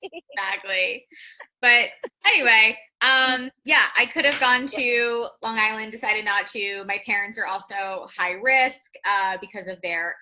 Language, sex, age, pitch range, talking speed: English, female, 20-39, 195-250 Hz, 145 wpm